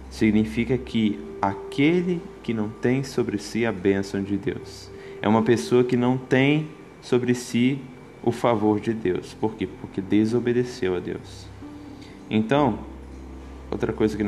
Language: Portuguese